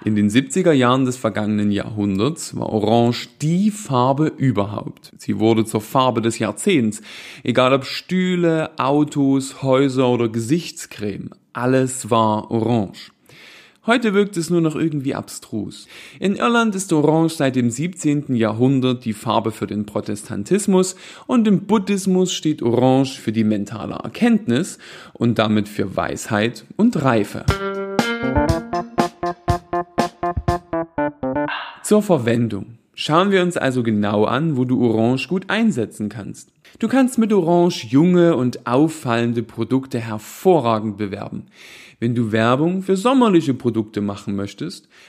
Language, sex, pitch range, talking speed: German, male, 110-170 Hz, 125 wpm